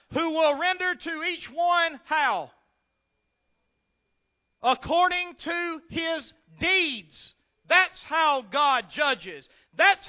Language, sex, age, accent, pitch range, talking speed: English, male, 40-59, American, 265-345 Hz, 95 wpm